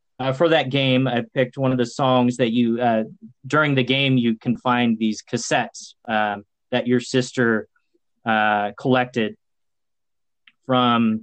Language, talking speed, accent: English, 150 wpm, American